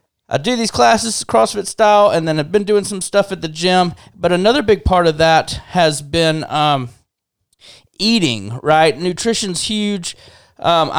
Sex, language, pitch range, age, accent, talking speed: male, English, 125-160 Hz, 30-49, American, 165 wpm